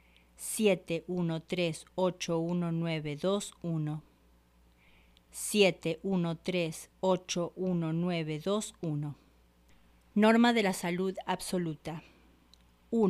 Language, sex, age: English, female, 40-59